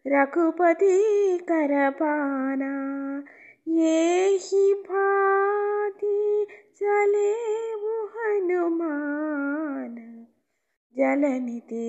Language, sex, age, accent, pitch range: Tamil, female, 20-39, native, 280-375 Hz